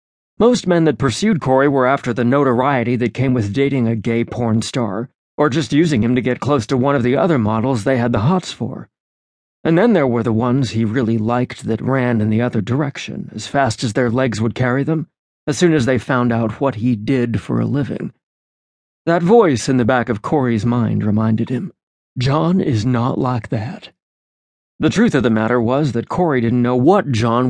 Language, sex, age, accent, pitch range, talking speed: English, male, 40-59, American, 115-145 Hz, 210 wpm